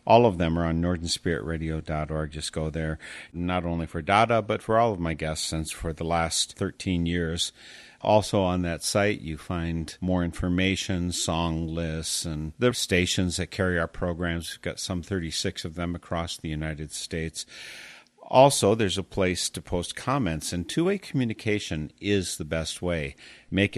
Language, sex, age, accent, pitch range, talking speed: English, male, 50-69, American, 80-100 Hz, 170 wpm